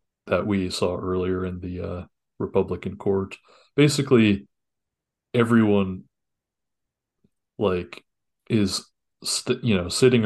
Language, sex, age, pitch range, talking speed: English, male, 30-49, 90-100 Hz, 100 wpm